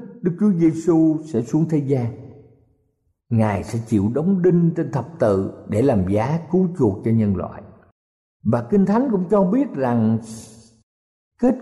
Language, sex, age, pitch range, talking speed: Vietnamese, male, 60-79, 105-170 Hz, 160 wpm